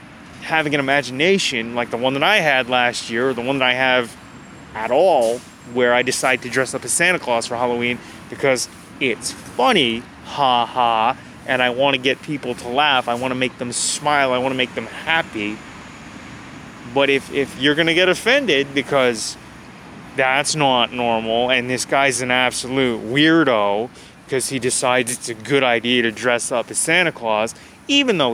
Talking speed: 185 wpm